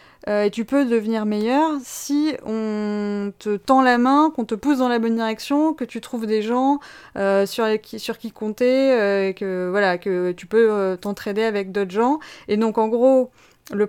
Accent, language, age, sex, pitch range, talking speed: French, French, 20-39, female, 200-235 Hz, 205 wpm